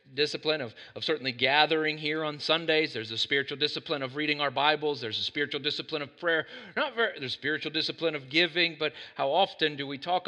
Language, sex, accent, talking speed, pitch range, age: English, male, American, 210 wpm, 120-155 Hz, 40-59